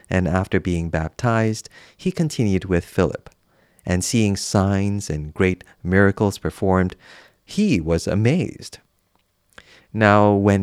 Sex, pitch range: male, 90-115 Hz